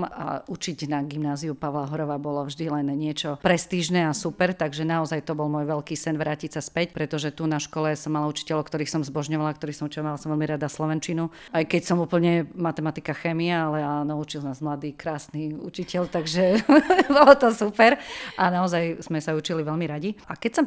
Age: 40-59